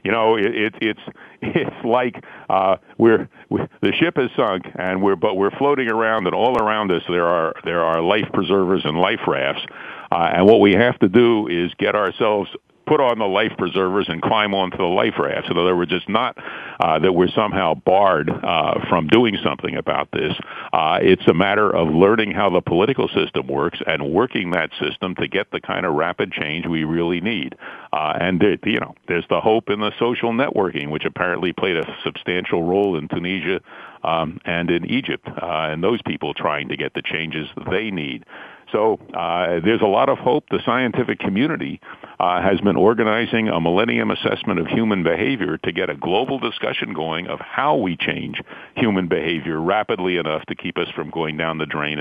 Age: 50-69